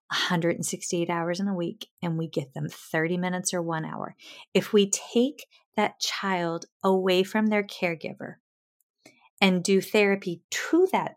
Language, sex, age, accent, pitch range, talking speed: English, female, 30-49, American, 180-225 Hz, 150 wpm